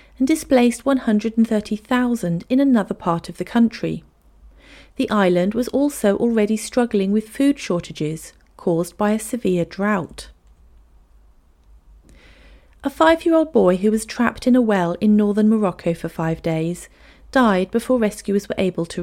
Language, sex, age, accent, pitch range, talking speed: English, female, 40-59, British, 170-235 Hz, 140 wpm